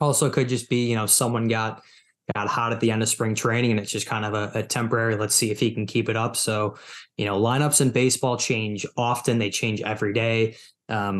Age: 20-39